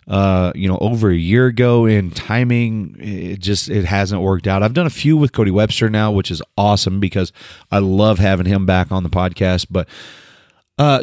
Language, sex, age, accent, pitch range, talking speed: English, male, 30-49, American, 95-115 Hz, 200 wpm